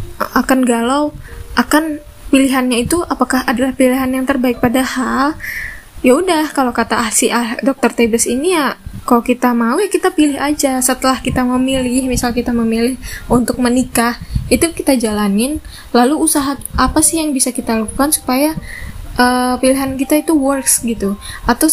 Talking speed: 150 wpm